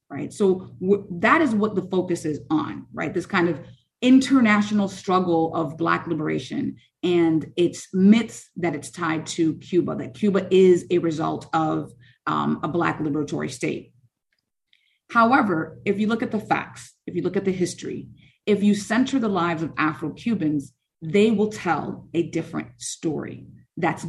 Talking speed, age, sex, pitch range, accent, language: 160 wpm, 30-49, female, 165-220 Hz, American, English